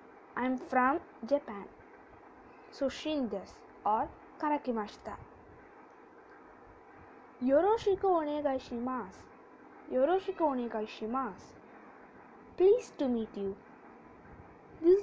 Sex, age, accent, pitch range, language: female, 20-39, Indian, 235-335 Hz, Japanese